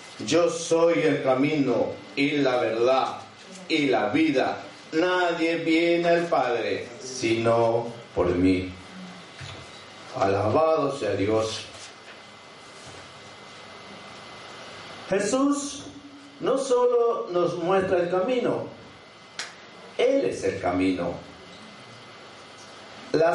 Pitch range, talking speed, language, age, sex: 150-200 Hz, 80 wpm, Spanish, 50-69, male